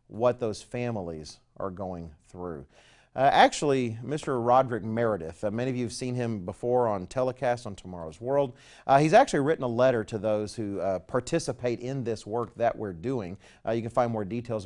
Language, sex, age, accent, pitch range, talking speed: English, male, 40-59, American, 105-140 Hz, 190 wpm